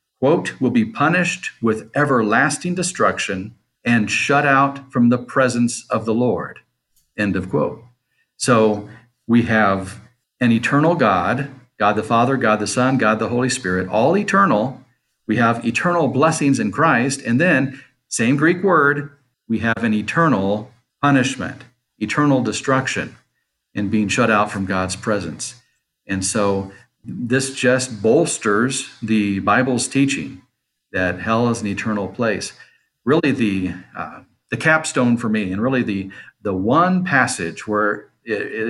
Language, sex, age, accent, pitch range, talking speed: English, male, 50-69, American, 105-130 Hz, 140 wpm